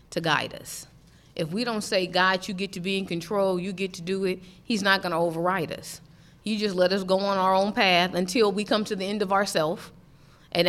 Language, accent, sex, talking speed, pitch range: English, American, female, 240 wpm, 165-200 Hz